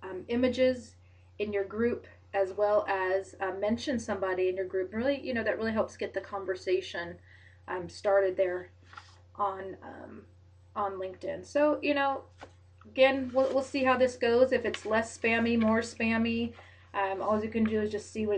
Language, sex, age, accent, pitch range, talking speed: English, female, 30-49, American, 195-255 Hz, 180 wpm